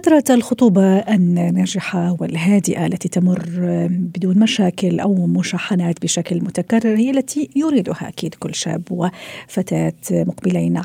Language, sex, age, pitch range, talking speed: Arabic, female, 40-59, 180-230 Hz, 110 wpm